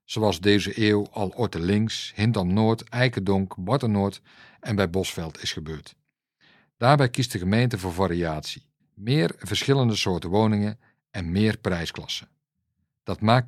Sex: male